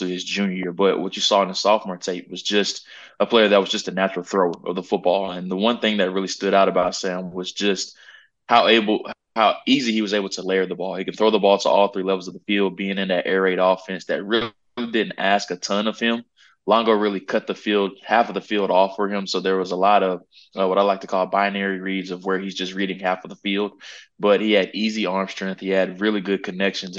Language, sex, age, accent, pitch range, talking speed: English, male, 20-39, American, 95-100 Hz, 265 wpm